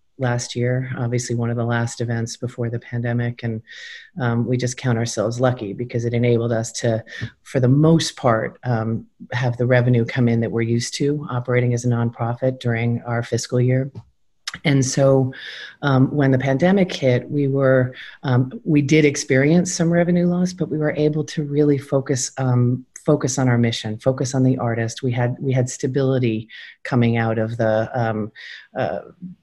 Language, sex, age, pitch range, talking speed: English, female, 40-59, 120-140 Hz, 175 wpm